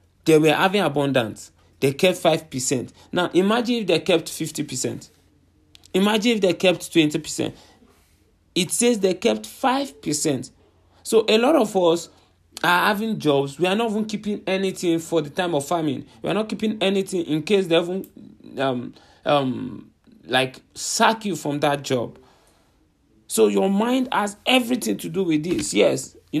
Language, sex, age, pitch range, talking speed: English, male, 40-59, 150-195 Hz, 160 wpm